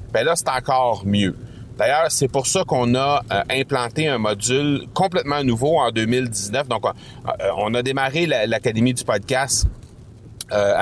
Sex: male